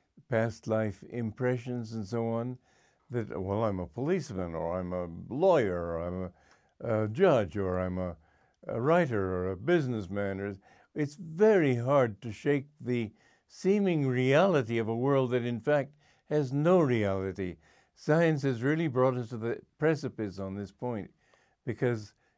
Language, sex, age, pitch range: English, male, 60-79, 105-145 Hz